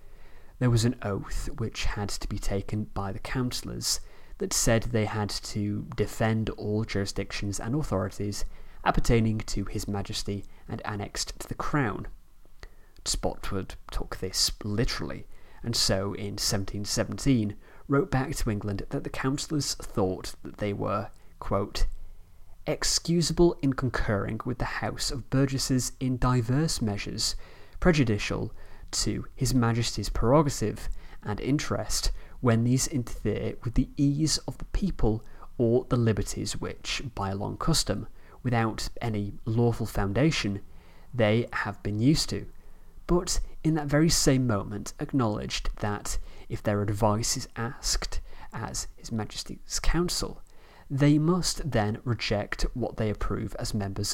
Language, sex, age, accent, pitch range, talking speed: English, male, 20-39, British, 100-130 Hz, 130 wpm